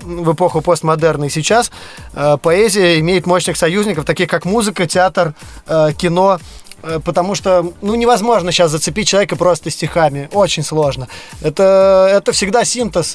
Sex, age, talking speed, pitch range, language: male, 20-39, 145 wpm, 160-195 Hz, Russian